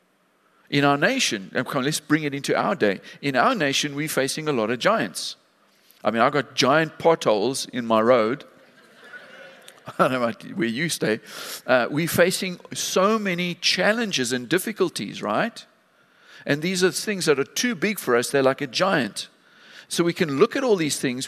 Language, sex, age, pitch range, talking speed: English, male, 50-69, 135-200 Hz, 180 wpm